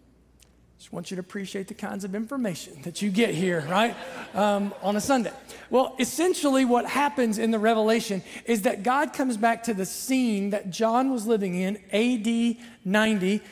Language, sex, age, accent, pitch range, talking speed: English, male, 40-59, American, 200-240 Hz, 180 wpm